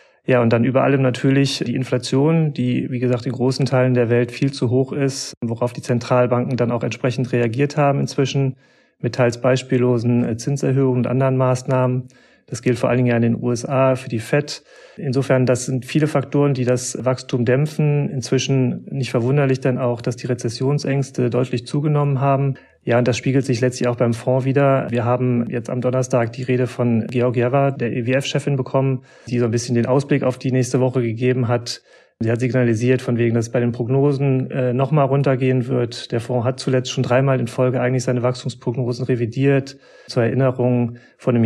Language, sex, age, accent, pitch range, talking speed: German, male, 40-59, German, 120-135 Hz, 195 wpm